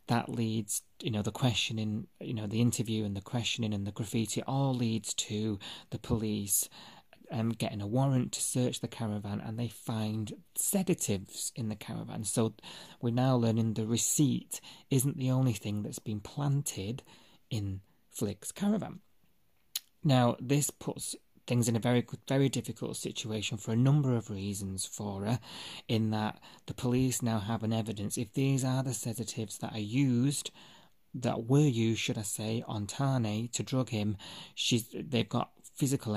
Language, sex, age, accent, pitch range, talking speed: English, male, 30-49, British, 105-120 Hz, 165 wpm